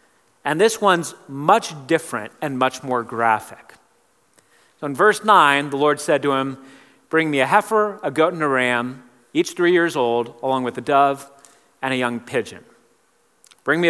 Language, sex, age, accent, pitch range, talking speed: English, male, 40-59, American, 135-210 Hz, 175 wpm